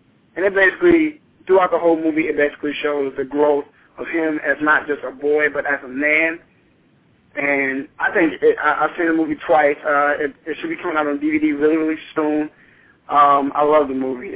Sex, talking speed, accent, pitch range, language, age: male, 210 wpm, American, 140-160 Hz, English, 20-39